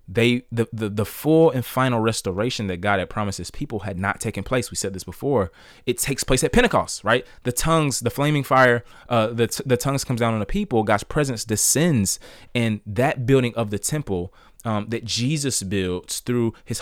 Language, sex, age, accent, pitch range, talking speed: English, male, 20-39, American, 95-120 Hz, 205 wpm